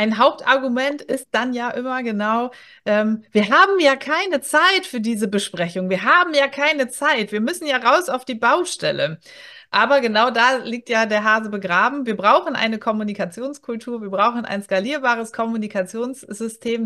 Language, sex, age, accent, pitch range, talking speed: German, female, 30-49, German, 210-270 Hz, 160 wpm